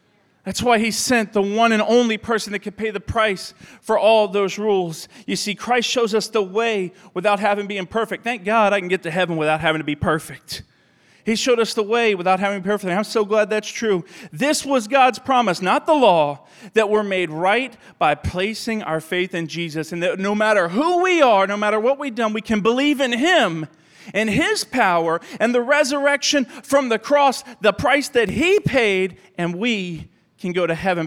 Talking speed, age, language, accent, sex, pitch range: 215 wpm, 40-59, English, American, male, 155-220 Hz